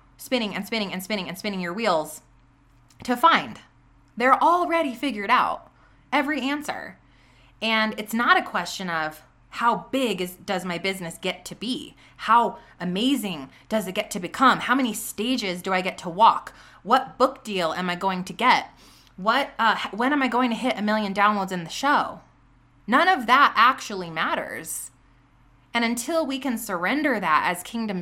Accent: American